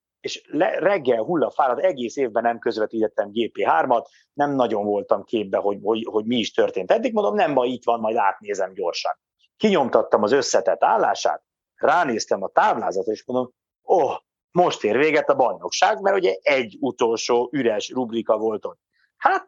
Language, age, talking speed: Hungarian, 50-69, 165 wpm